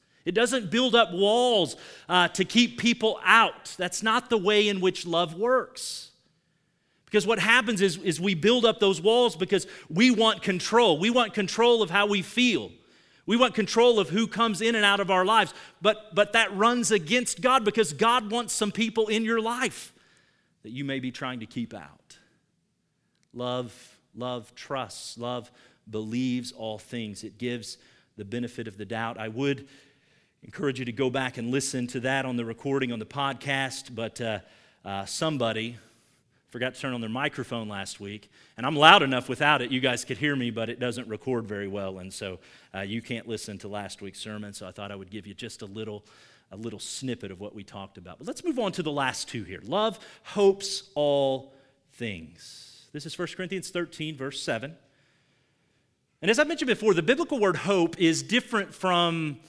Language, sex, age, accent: English, male, 40-59, American